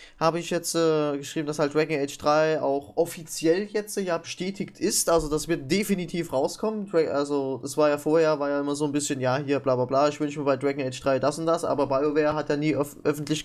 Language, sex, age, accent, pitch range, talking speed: English, male, 20-39, German, 145-170 Hz, 240 wpm